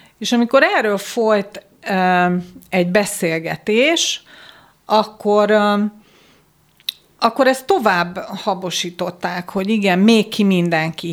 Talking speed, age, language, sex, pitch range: 85 wpm, 40-59, Hungarian, female, 175-215 Hz